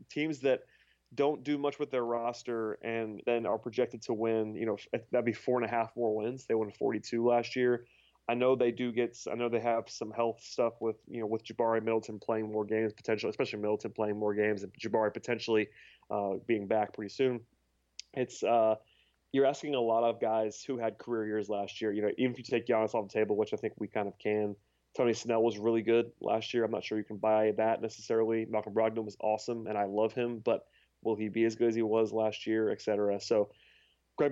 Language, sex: English, male